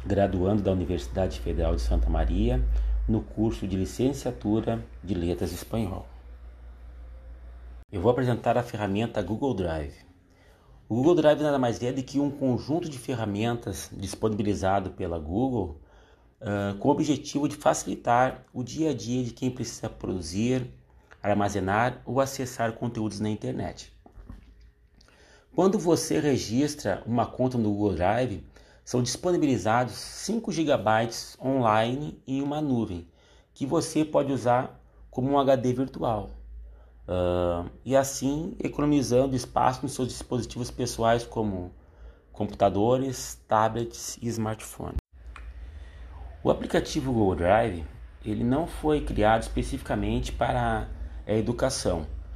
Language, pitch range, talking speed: Portuguese, 90-130 Hz, 120 wpm